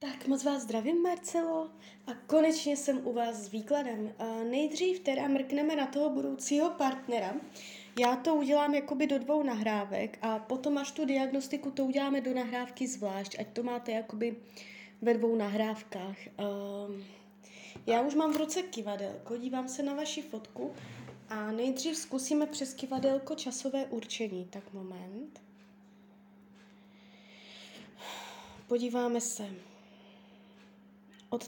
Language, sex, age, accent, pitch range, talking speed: Czech, female, 20-39, native, 205-260 Hz, 130 wpm